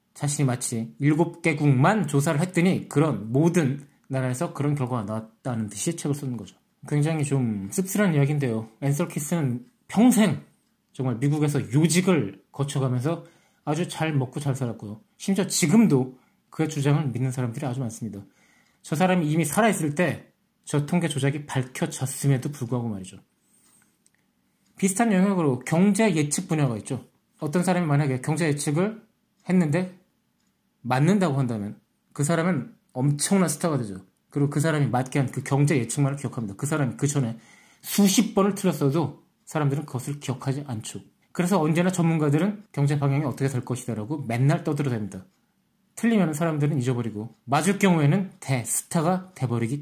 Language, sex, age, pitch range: Korean, male, 20-39, 130-175 Hz